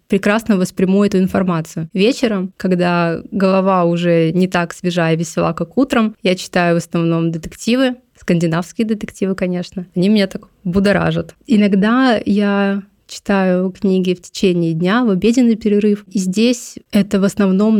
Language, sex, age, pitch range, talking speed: Russian, female, 20-39, 180-210 Hz, 140 wpm